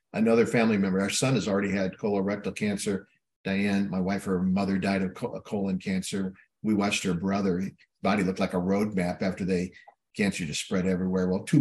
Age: 50-69